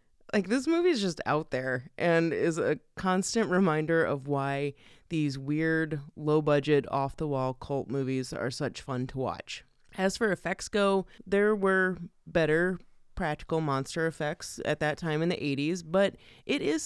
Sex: female